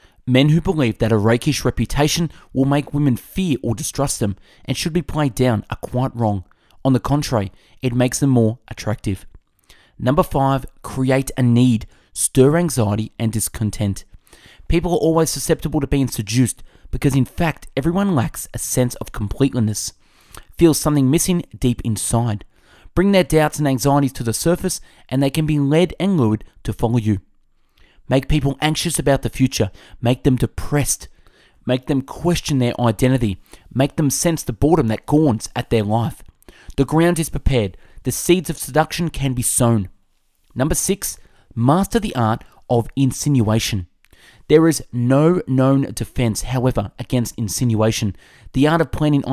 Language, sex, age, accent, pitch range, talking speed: English, male, 20-39, Australian, 110-150 Hz, 160 wpm